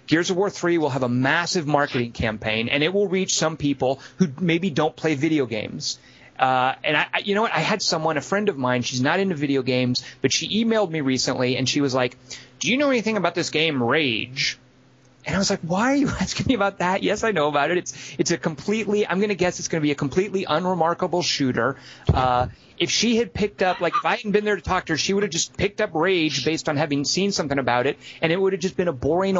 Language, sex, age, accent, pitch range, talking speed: English, male, 30-49, American, 140-195 Hz, 265 wpm